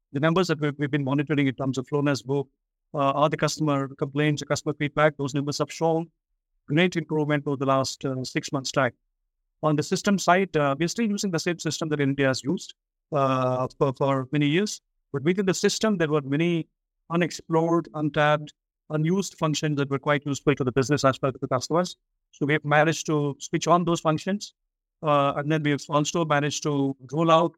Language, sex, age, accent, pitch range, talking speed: English, male, 50-69, Indian, 140-165 Hz, 200 wpm